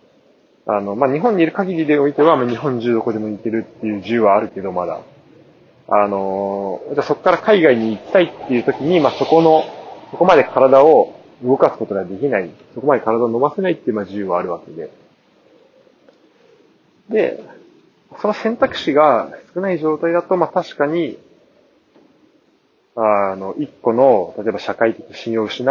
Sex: male